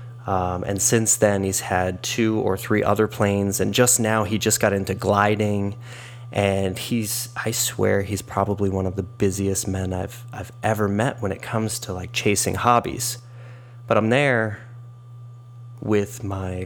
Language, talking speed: English, 160 wpm